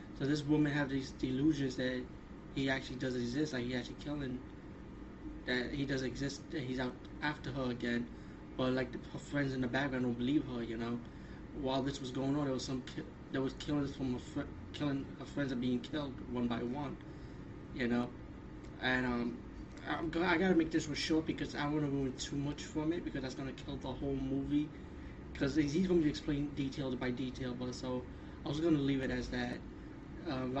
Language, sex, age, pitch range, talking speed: English, male, 20-39, 125-150 Hz, 215 wpm